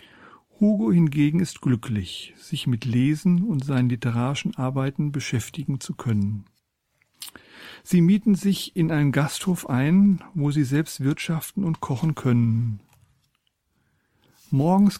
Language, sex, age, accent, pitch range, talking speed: German, male, 50-69, German, 125-165 Hz, 115 wpm